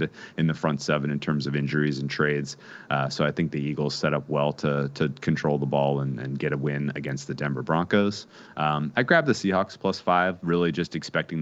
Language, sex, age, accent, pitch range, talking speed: English, male, 30-49, American, 70-85 Hz, 225 wpm